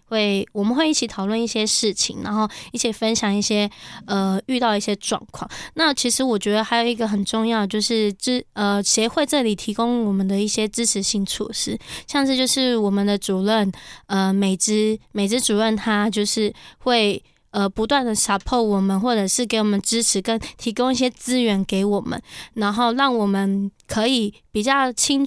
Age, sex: 20-39, female